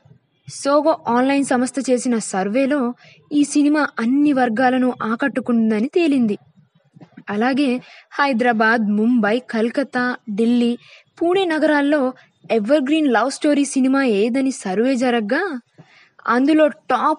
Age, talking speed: 20-39, 95 wpm